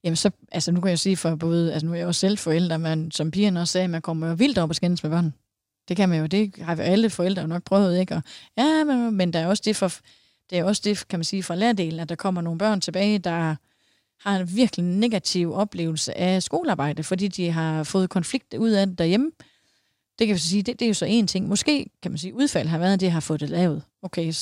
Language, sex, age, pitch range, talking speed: Danish, female, 30-49, 170-205 Hz, 265 wpm